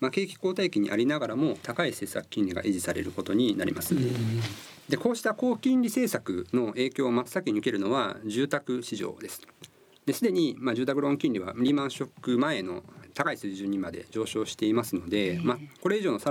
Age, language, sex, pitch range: 50-69, Japanese, male, 110-170 Hz